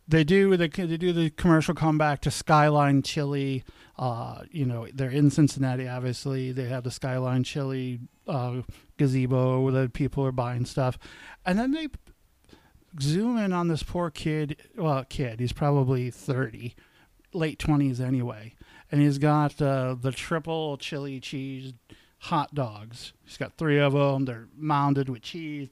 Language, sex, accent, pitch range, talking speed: English, male, American, 130-175 Hz, 155 wpm